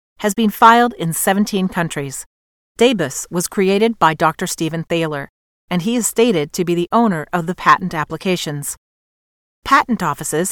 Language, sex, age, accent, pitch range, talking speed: English, female, 40-59, American, 160-220 Hz, 155 wpm